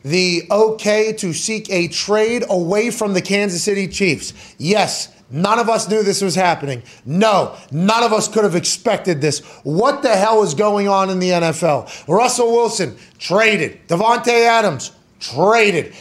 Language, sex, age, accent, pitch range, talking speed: English, male, 30-49, American, 175-215 Hz, 160 wpm